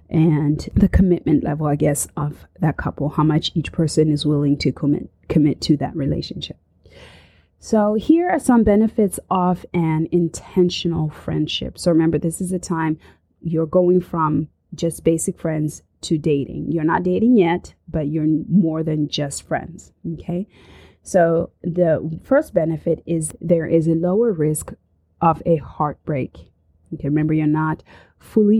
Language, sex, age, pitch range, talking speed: English, female, 30-49, 155-180 Hz, 155 wpm